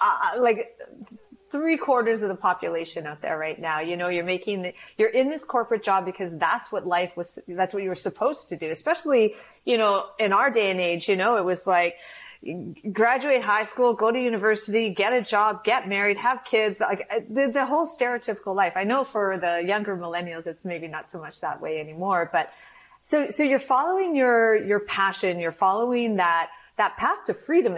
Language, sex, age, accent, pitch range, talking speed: English, female, 40-59, American, 170-230 Hz, 205 wpm